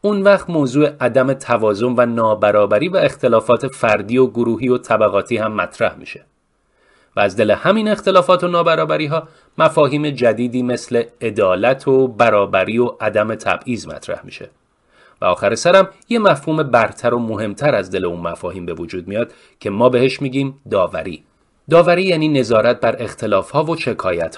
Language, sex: Persian, male